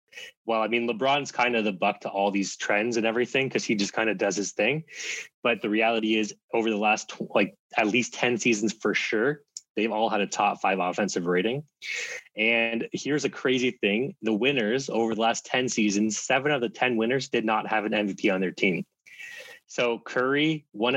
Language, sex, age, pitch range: English, male, 20-39, 105-120 Hz